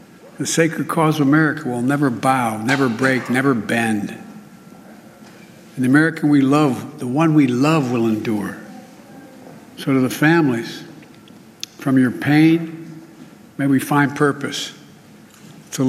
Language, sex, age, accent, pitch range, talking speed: English, male, 60-79, American, 130-160 Hz, 130 wpm